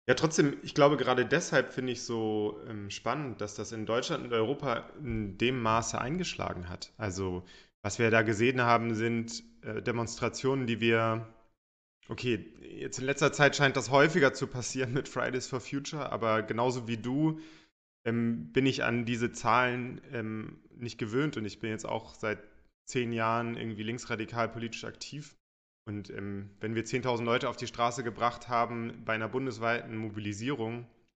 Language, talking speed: German, 165 wpm